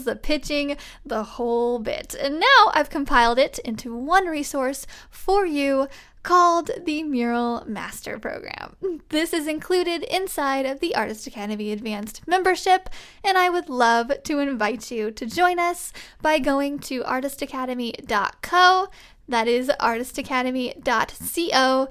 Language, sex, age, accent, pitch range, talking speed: English, female, 10-29, American, 235-315 Hz, 130 wpm